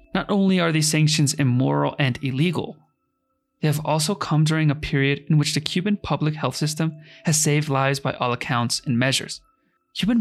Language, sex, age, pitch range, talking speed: English, male, 30-49, 145-185 Hz, 180 wpm